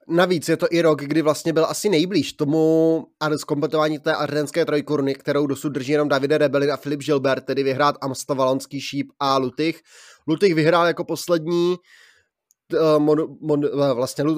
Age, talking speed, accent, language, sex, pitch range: 20-39, 150 wpm, native, Czech, male, 140-160 Hz